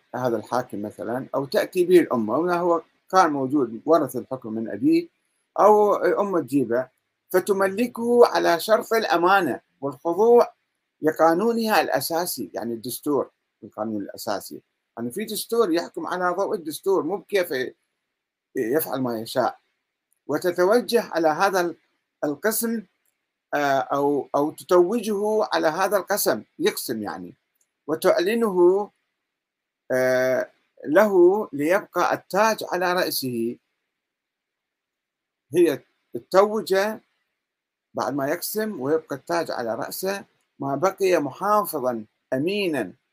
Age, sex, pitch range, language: 50-69, male, 145-215 Hz, Arabic